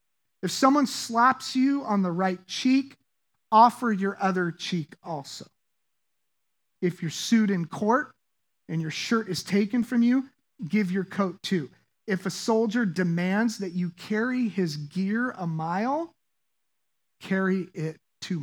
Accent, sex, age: American, male, 40-59